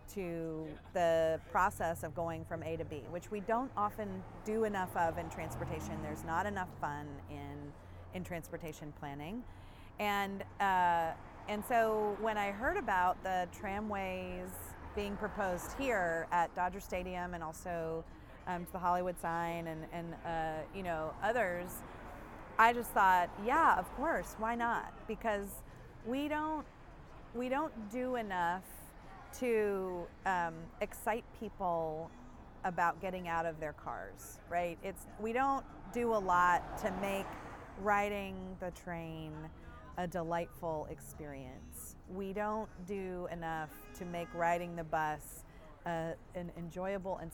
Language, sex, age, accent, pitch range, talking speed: English, female, 30-49, American, 165-205 Hz, 135 wpm